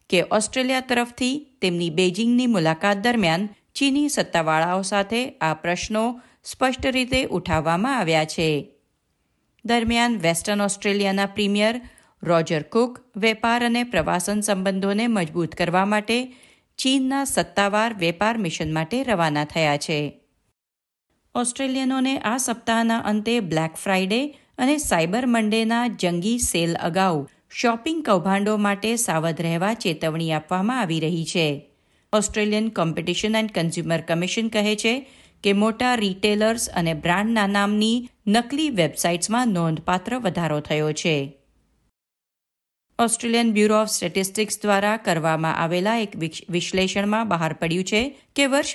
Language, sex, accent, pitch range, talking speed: Gujarati, female, native, 170-235 Hz, 110 wpm